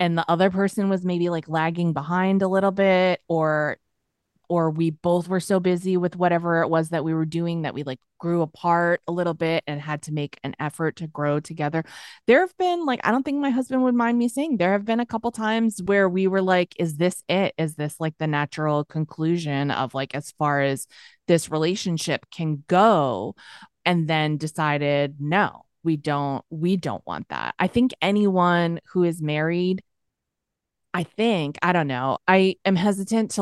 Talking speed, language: 200 wpm, English